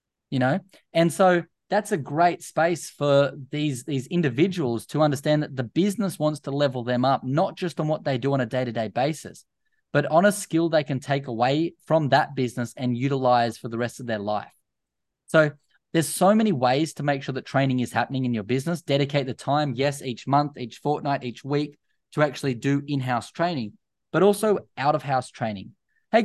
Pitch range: 130-170 Hz